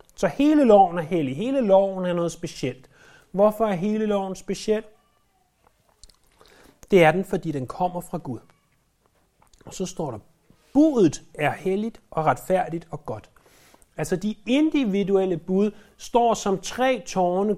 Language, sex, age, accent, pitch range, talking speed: Danish, male, 30-49, native, 155-205 Hz, 145 wpm